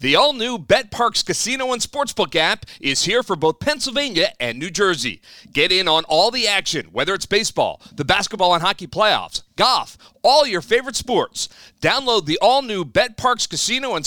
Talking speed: 190 wpm